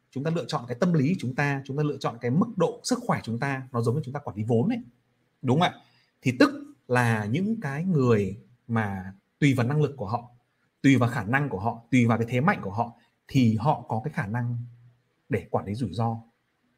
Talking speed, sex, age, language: 250 wpm, male, 30-49, Vietnamese